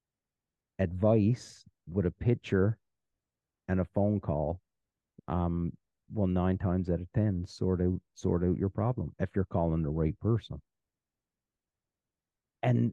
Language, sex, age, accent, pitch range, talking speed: English, male, 40-59, American, 90-110 Hz, 130 wpm